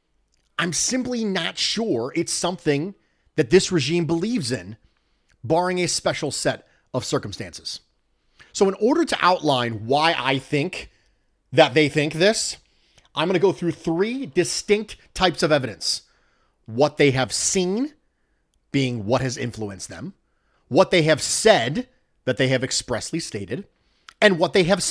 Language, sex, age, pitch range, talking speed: English, male, 30-49, 130-185 Hz, 145 wpm